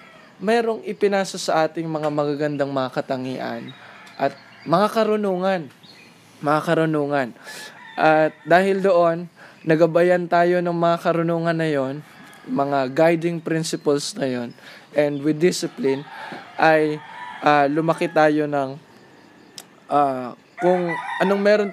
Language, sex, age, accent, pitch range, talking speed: Filipino, male, 20-39, native, 145-175 Hz, 110 wpm